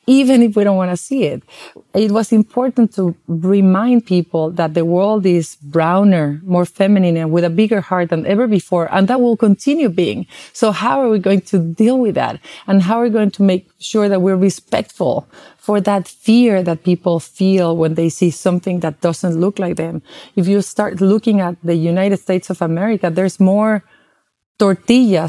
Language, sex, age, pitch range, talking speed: English, female, 30-49, 175-210 Hz, 195 wpm